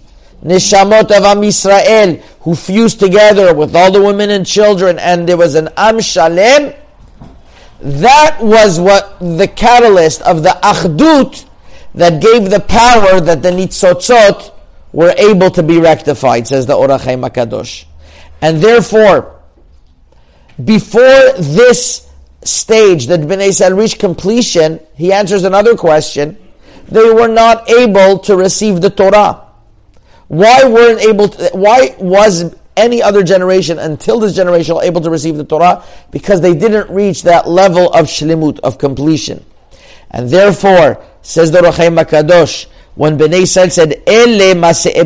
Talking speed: 135 wpm